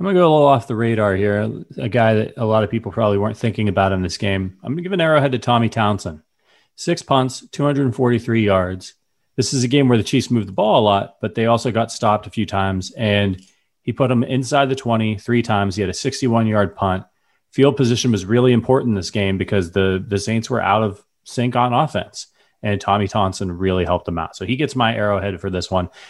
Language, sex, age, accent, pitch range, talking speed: English, male, 30-49, American, 100-125 Hz, 240 wpm